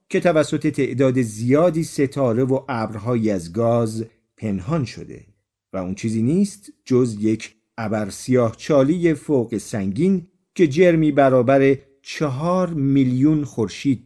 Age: 50-69